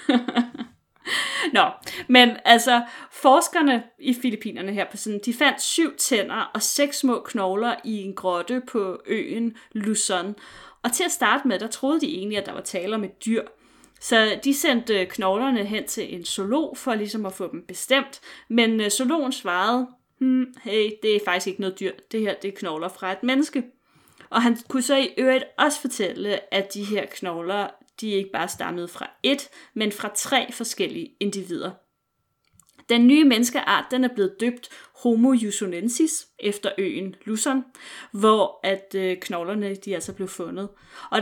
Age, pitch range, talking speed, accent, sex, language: 30-49, 195-260 Hz, 170 wpm, native, female, Danish